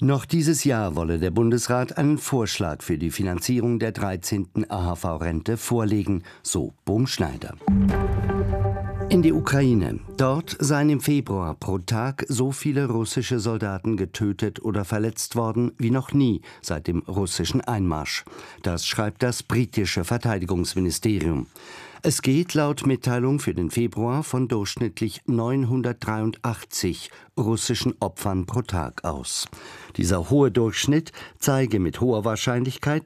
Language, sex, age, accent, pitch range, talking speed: German, male, 50-69, German, 100-130 Hz, 125 wpm